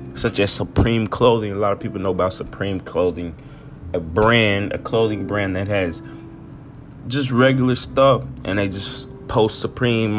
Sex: male